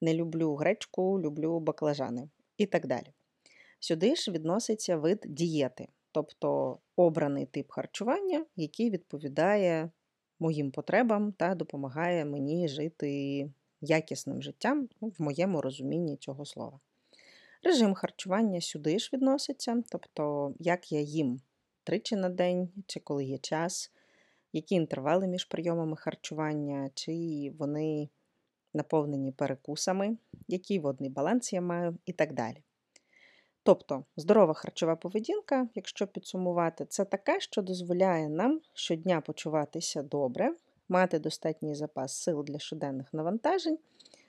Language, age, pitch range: Ukrainian, 30-49, 150-200 Hz